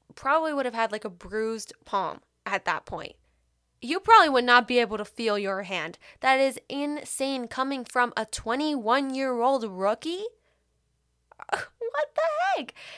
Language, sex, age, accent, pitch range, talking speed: English, female, 10-29, American, 200-270 Hz, 155 wpm